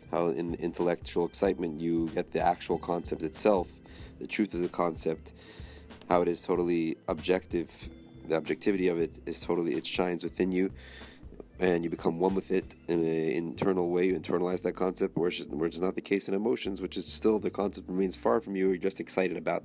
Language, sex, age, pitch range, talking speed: English, male, 30-49, 85-95 Hz, 200 wpm